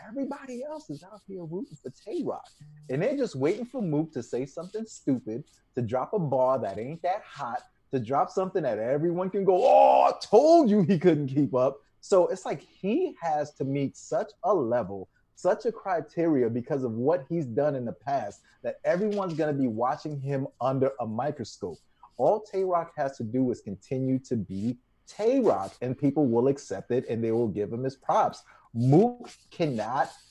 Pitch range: 125-195 Hz